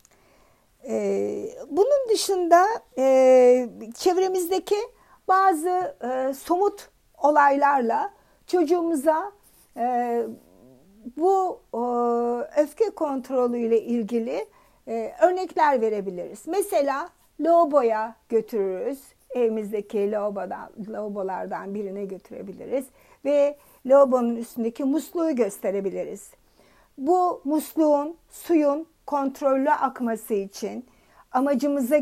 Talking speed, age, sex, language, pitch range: 60 wpm, 60-79, female, Turkish, 225-300 Hz